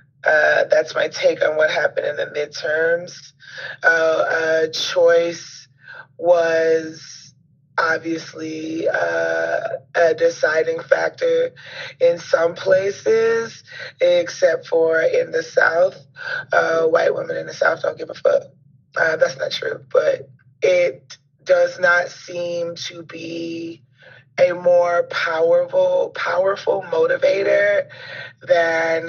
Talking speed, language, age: 110 wpm, English, 30-49